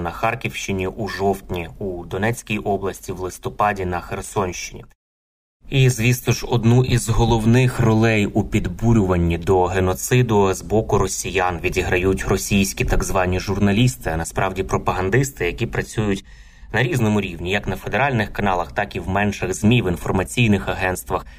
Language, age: Ukrainian, 20-39